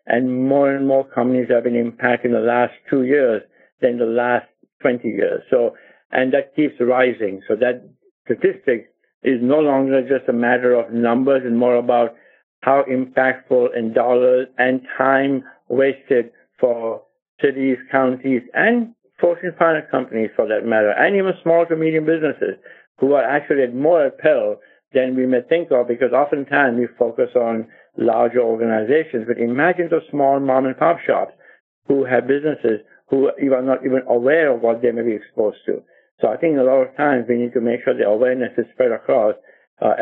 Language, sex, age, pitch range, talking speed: English, male, 60-79, 120-140 Hz, 175 wpm